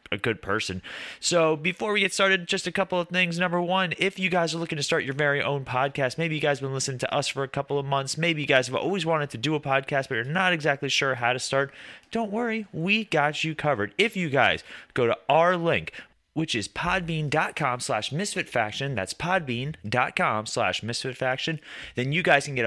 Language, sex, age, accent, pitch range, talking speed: English, male, 30-49, American, 120-175 Hz, 220 wpm